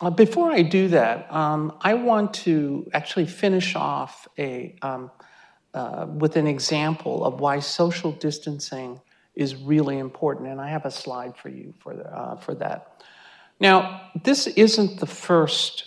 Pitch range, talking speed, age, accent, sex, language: 145-185 Hz, 155 wpm, 50-69, American, male, English